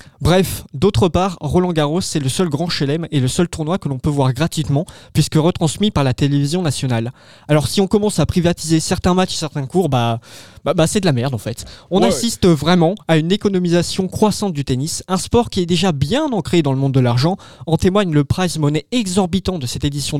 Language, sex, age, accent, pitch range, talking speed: French, male, 20-39, French, 140-185 Hz, 220 wpm